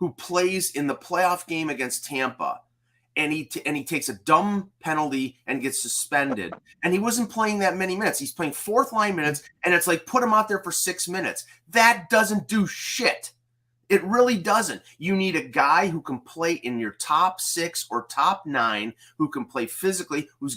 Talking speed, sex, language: 195 wpm, male, English